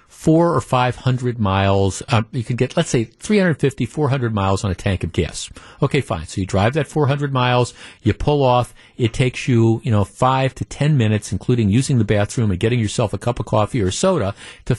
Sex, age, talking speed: male, 50-69, 220 wpm